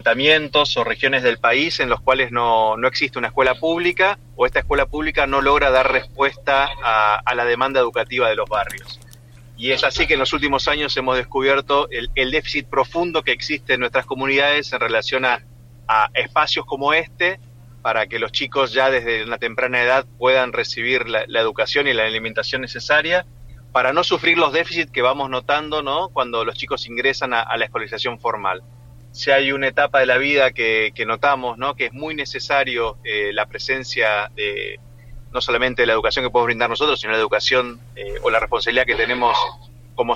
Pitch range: 120-145 Hz